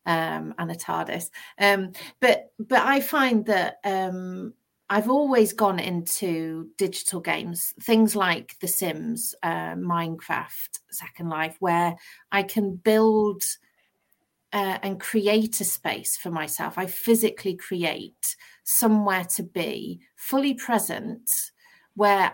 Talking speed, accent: 120 wpm, British